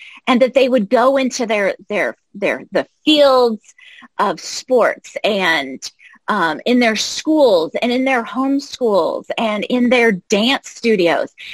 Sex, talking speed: female, 140 wpm